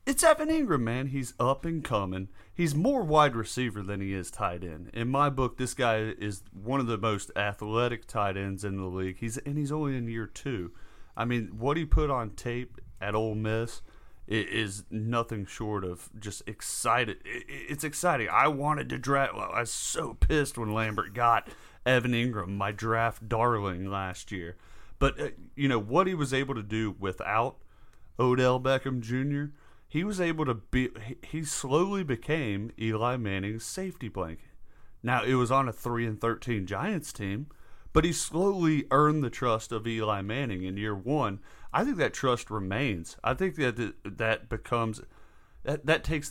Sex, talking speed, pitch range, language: male, 180 wpm, 105-140 Hz, English